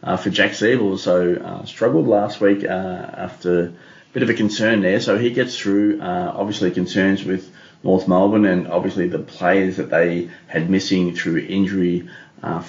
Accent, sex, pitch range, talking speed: Australian, male, 90-105 Hz, 180 wpm